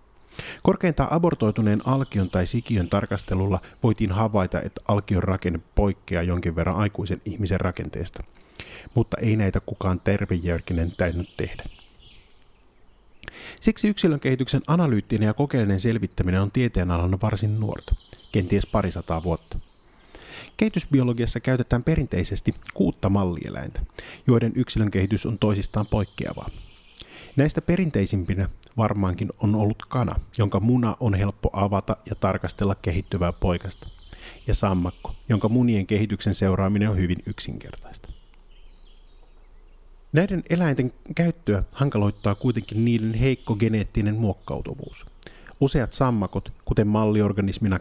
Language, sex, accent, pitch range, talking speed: Finnish, male, native, 95-120 Hz, 110 wpm